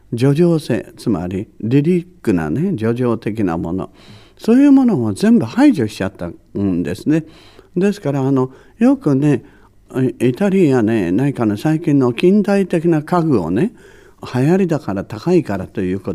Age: 60-79